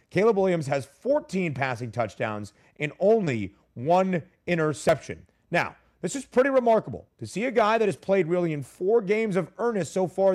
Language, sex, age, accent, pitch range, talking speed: English, male, 30-49, American, 140-200 Hz, 175 wpm